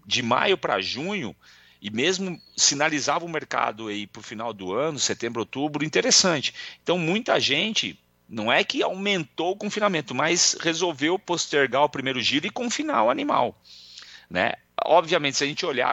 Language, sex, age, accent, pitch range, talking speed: Portuguese, male, 40-59, Brazilian, 100-160 Hz, 160 wpm